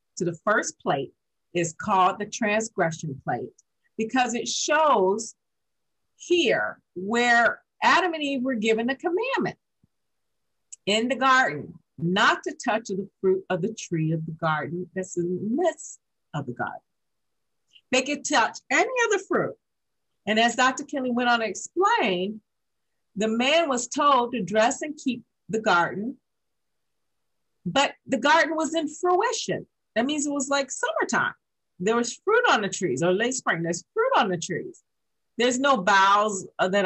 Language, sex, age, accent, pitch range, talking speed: English, female, 50-69, American, 190-280 Hz, 155 wpm